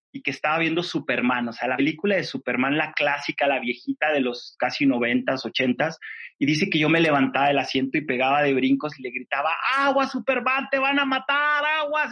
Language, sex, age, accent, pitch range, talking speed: Spanish, male, 30-49, Mexican, 135-170 Hz, 210 wpm